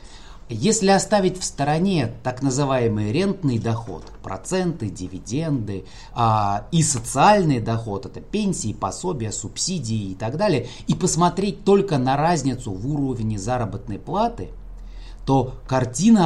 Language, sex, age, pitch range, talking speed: Russian, male, 30-49, 115-155 Hz, 115 wpm